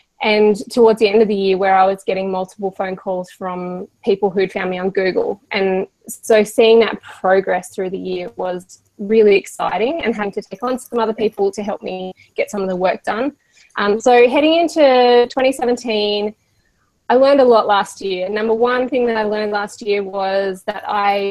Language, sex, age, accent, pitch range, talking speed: English, female, 20-39, Australian, 190-225 Hz, 200 wpm